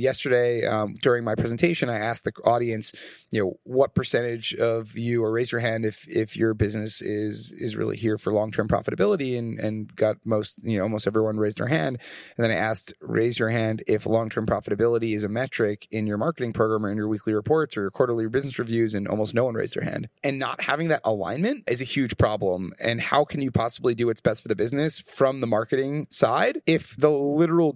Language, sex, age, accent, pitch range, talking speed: English, male, 30-49, American, 110-130 Hz, 225 wpm